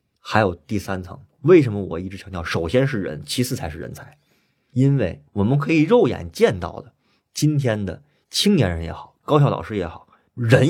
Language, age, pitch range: Chinese, 20-39, 95-145 Hz